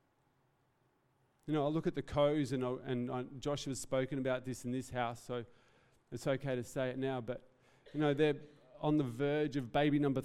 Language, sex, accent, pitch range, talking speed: English, male, Australian, 130-150 Hz, 195 wpm